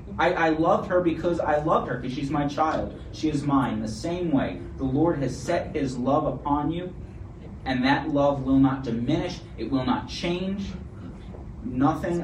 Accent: American